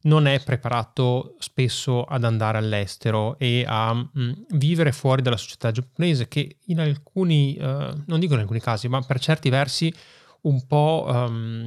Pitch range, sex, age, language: 115-135 Hz, male, 20-39, Italian